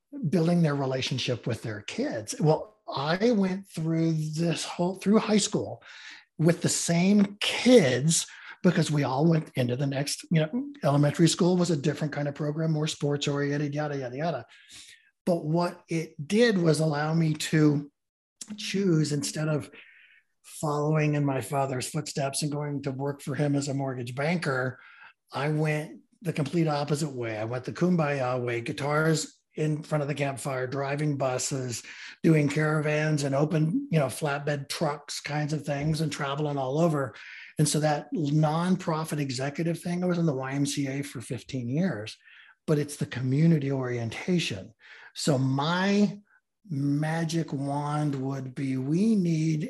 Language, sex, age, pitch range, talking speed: English, male, 60-79, 140-165 Hz, 155 wpm